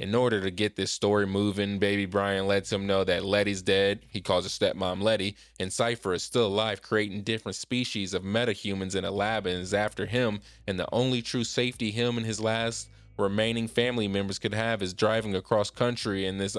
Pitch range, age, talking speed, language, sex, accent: 95-110 Hz, 20-39, 205 wpm, English, male, American